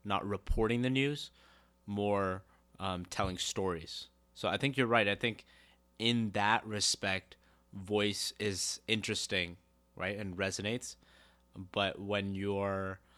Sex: male